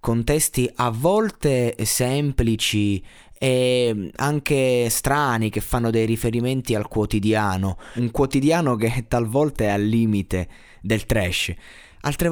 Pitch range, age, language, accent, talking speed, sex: 100-130 Hz, 20-39, Italian, native, 115 wpm, male